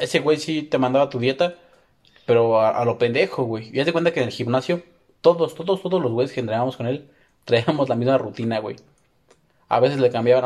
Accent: Mexican